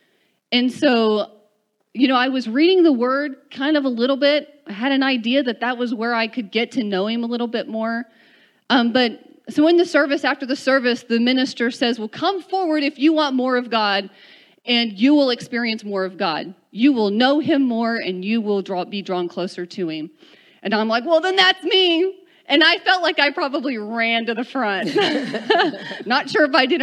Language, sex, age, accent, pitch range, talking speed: English, female, 30-49, American, 215-275 Hz, 215 wpm